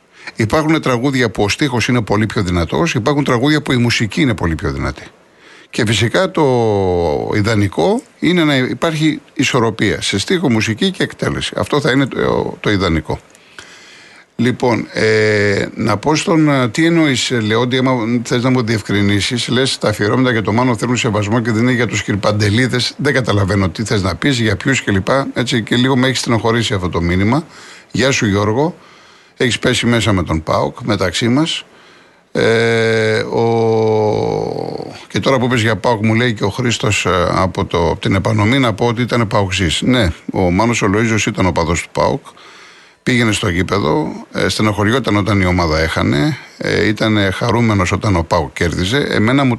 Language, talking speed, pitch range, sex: Greek, 170 wpm, 105-130 Hz, male